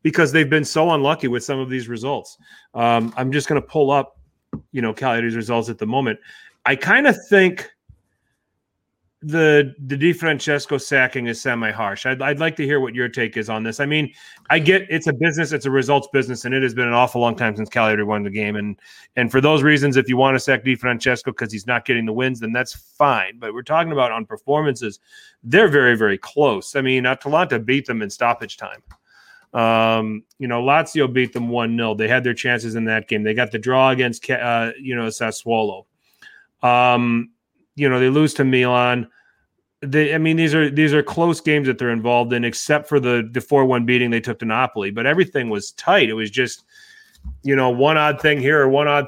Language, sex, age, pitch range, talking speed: English, male, 30-49, 120-145 Hz, 220 wpm